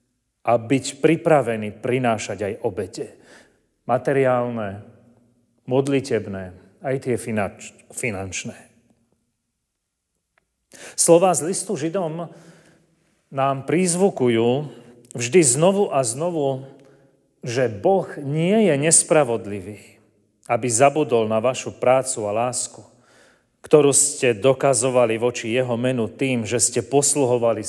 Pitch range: 115-145 Hz